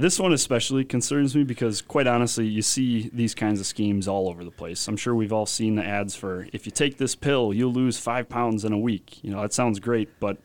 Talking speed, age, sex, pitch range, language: 255 wpm, 30-49, male, 100-115 Hz, English